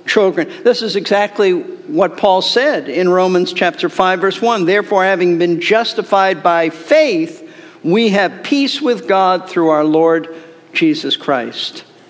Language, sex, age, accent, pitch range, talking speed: English, male, 50-69, American, 180-240 Hz, 140 wpm